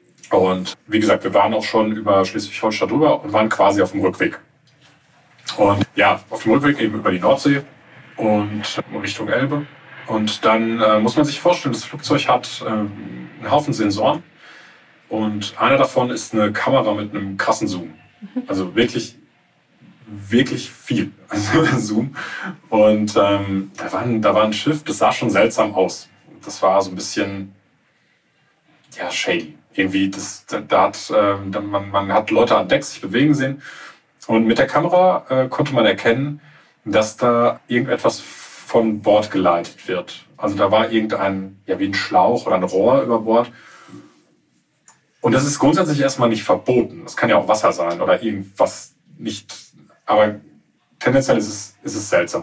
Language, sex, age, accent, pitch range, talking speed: German, male, 30-49, German, 100-135 Hz, 160 wpm